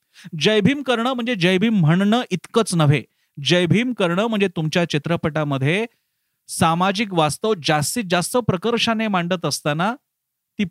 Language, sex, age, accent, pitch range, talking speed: Marathi, male, 40-59, native, 160-215 Hz, 130 wpm